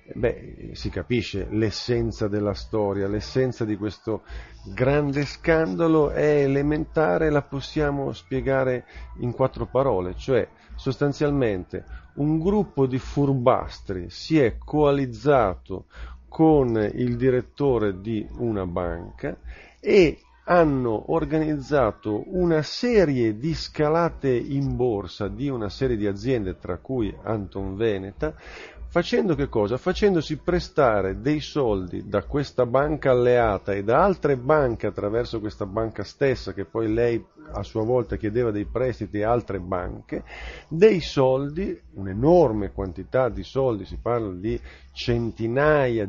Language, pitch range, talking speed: Italian, 105-145 Hz, 120 wpm